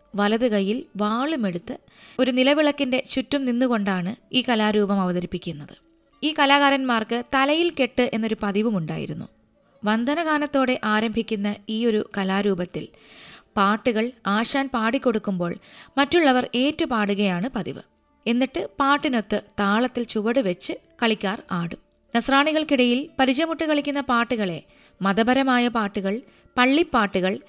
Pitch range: 205-265 Hz